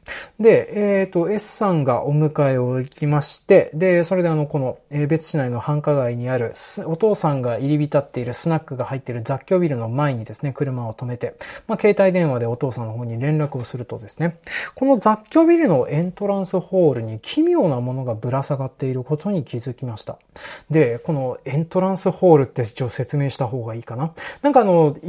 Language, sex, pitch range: Japanese, male, 130-200 Hz